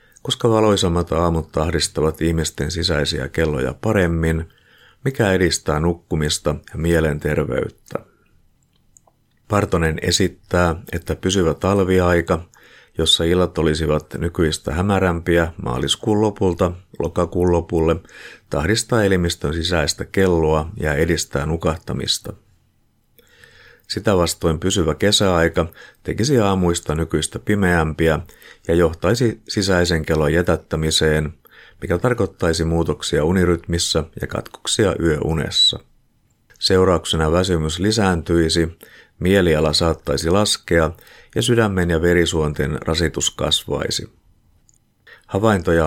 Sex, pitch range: male, 80-95 Hz